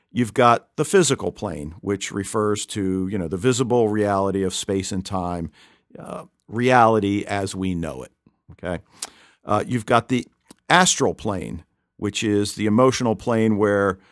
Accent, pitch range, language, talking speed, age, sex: American, 100-115 Hz, English, 155 wpm, 50-69, male